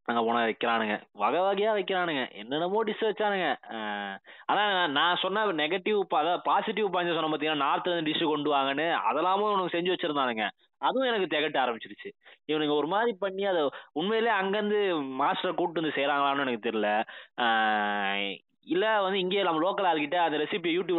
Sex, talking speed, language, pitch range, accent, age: male, 155 wpm, Tamil, 140-190 Hz, native, 20-39